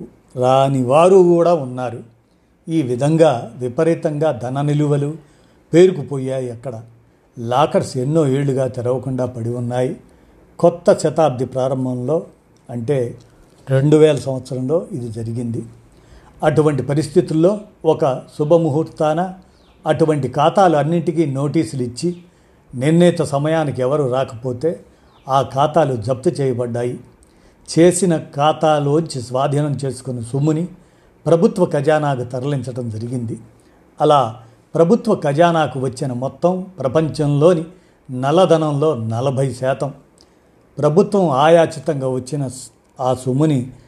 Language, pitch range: Telugu, 130-160 Hz